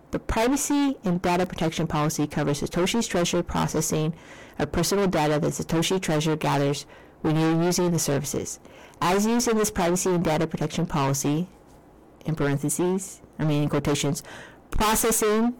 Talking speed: 145 wpm